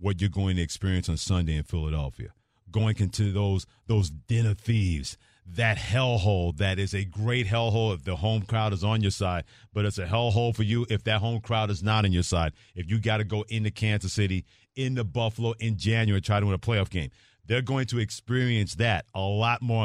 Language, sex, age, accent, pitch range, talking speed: English, male, 40-59, American, 90-110 Hz, 215 wpm